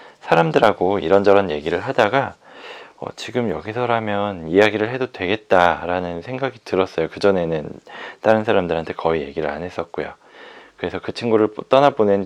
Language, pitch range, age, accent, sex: Korean, 85-115 Hz, 20-39, native, male